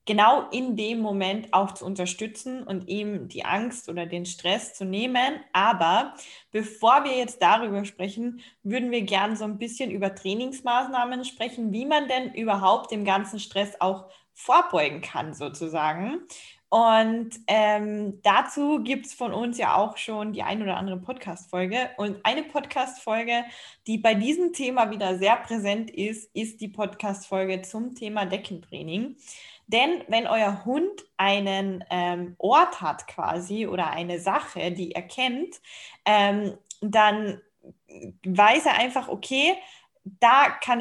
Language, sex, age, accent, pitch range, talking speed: German, female, 20-39, German, 195-245 Hz, 145 wpm